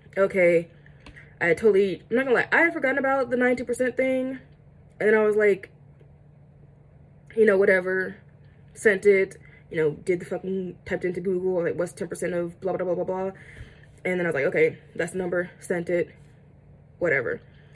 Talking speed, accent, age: 180 wpm, American, 20-39